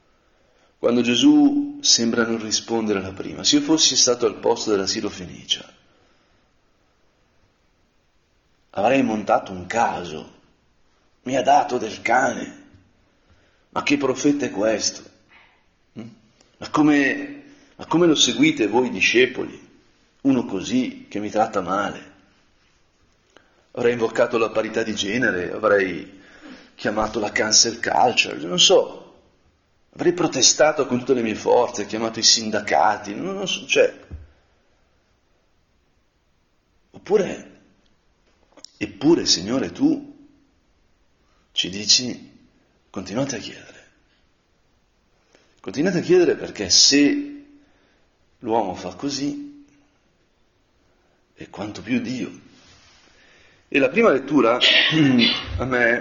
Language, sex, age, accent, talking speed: Italian, male, 40-59, native, 105 wpm